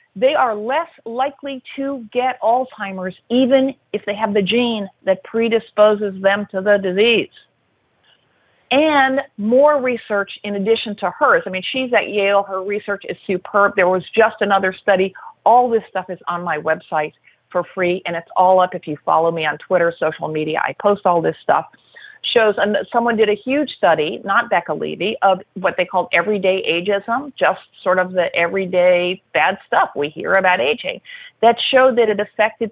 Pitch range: 185-225 Hz